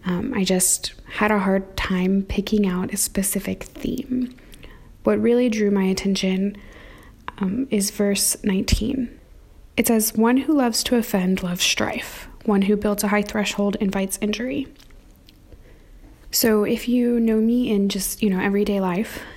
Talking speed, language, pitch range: 150 wpm, English, 185-225 Hz